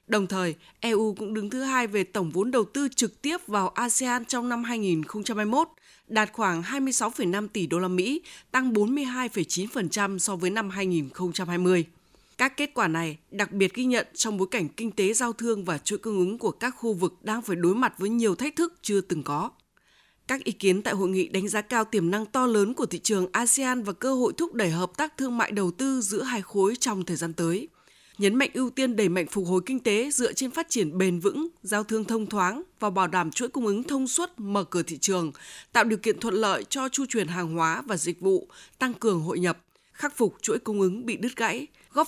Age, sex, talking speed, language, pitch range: 20-39, female, 225 wpm, Vietnamese, 185-245 Hz